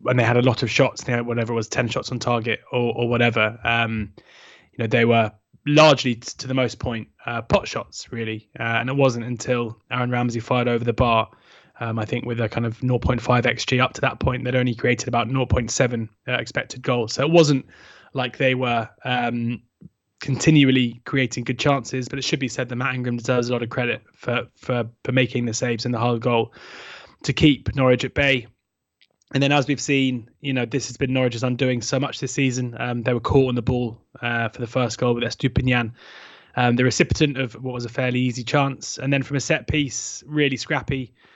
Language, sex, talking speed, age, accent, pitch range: English, male, 220 wpm, 20-39, British, 120-135 Hz